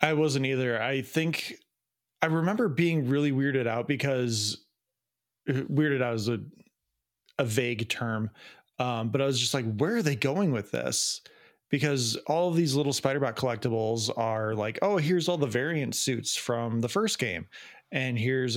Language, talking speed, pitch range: English, 170 wpm, 115-135 Hz